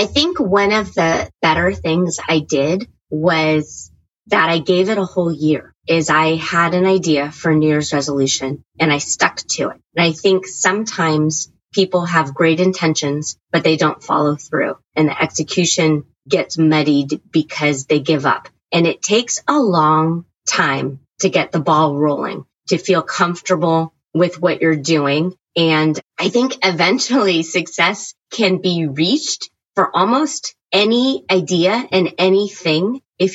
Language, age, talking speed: English, 30-49, 155 wpm